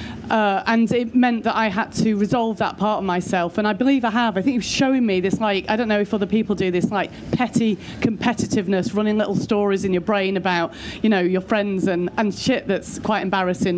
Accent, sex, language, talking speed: British, female, English, 235 wpm